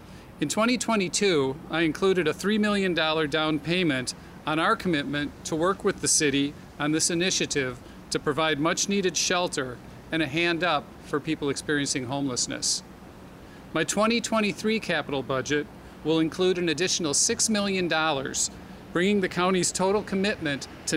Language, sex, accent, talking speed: English, male, American, 140 wpm